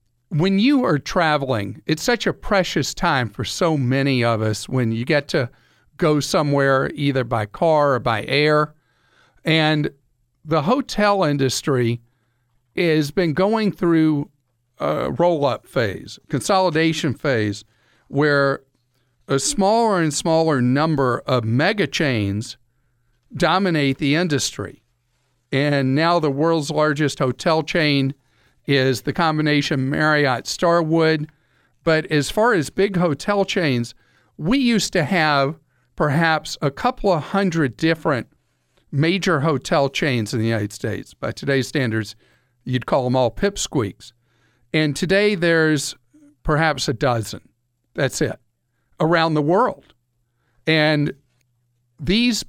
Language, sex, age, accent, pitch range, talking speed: English, male, 50-69, American, 125-165 Hz, 120 wpm